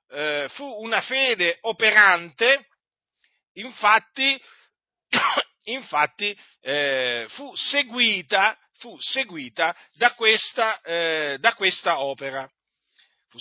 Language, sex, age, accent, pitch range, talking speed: Italian, male, 50-69, native, 160-230 Hz, 80 wpm